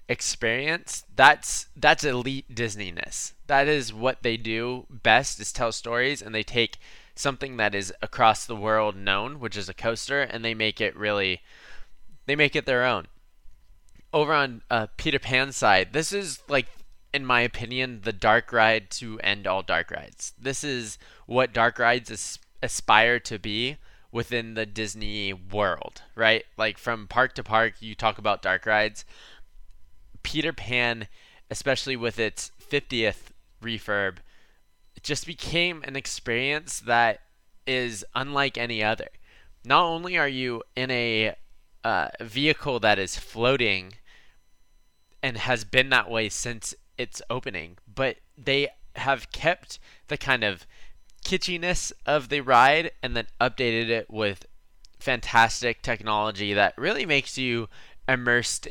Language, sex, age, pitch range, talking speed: English, male, 20-39, 105-130 Hz, 140 wpm